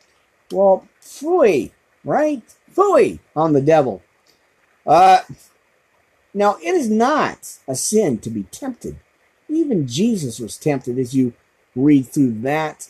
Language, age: English, 50-69